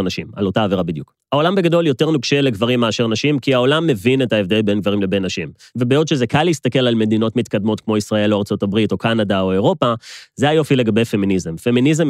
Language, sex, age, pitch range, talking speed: Hebrew, male, 30-49, 105-130 Hz, 200 wpm